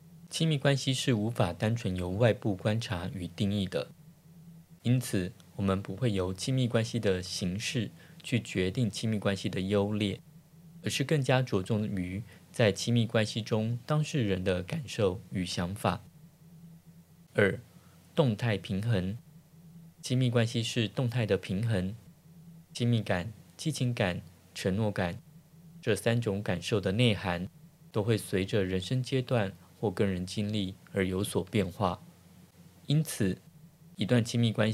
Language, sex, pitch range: Chinese, male, 100-155 Hz